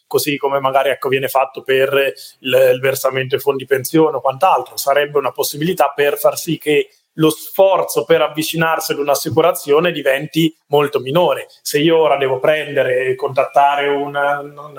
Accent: native